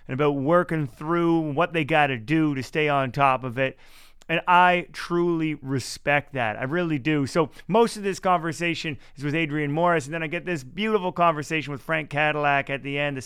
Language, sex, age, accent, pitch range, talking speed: English, male, 30-49, American, 150-185 Hz, 205 wpm